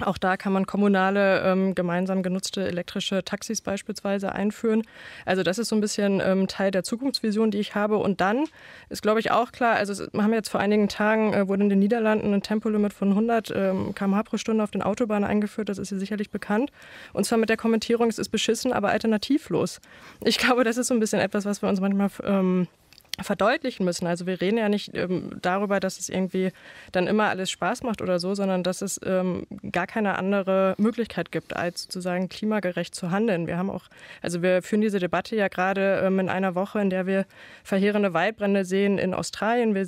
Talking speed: 210 wpm